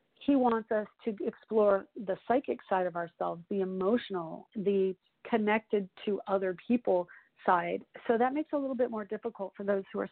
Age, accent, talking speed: 40-59, American, 185 wpm